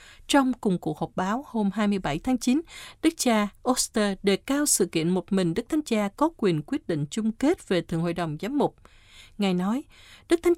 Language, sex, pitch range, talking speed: Vietnamese, female, 180-265 Hz, 210 wpm